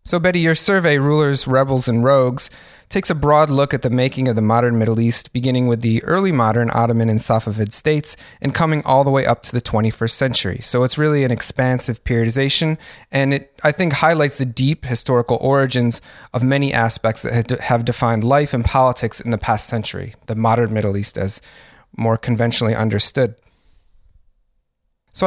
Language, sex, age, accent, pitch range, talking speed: English, male, 30-49, American, 115-135 Hz, 180 wpm